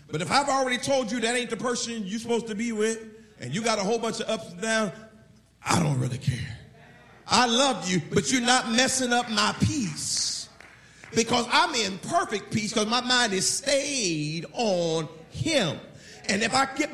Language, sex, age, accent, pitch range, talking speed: English, male, 40-59, American, 175-245 Hz, 195 wpm